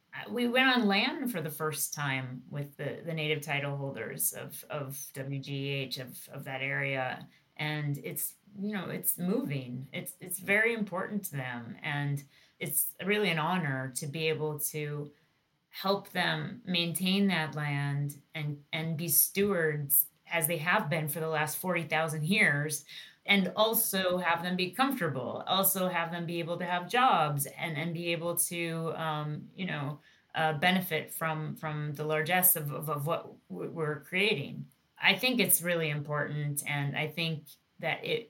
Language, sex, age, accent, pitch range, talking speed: English, female, 30-49, American, 145-180 Hz, 165 wpm